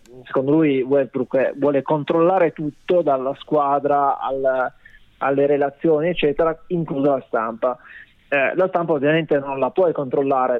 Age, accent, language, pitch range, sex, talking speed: 20-39, native, Italian, 130-160 Hz, male, 130 wpm